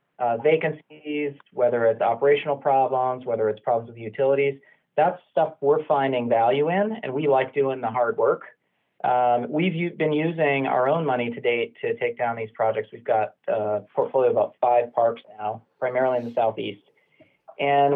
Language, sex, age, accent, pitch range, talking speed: English, male, 40-59, American, 120-155 Hz, 175 wpm